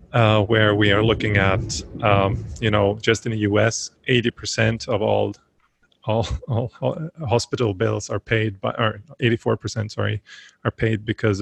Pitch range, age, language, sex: 105-120 Hz, 30-49, English, male